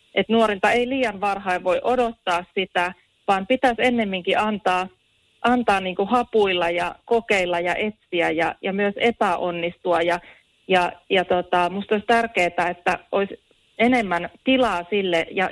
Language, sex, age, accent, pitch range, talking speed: Finnish, female, 30-49, native, 175-220 Hz, 140 wpm